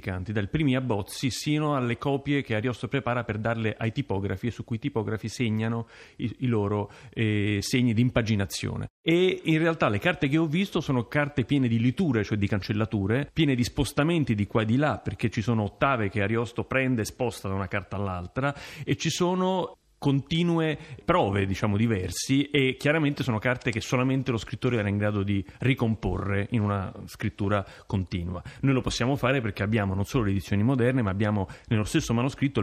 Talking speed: 190 wpm